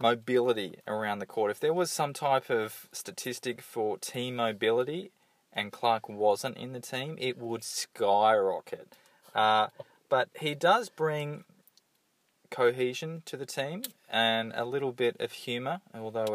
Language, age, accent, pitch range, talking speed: English, 20-39, Australian, 105-130 Hz, 145 wpm